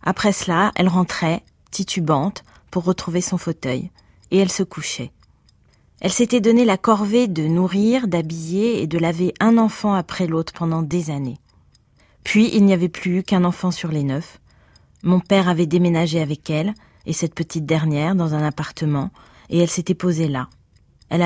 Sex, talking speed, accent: female, 170 wpm, French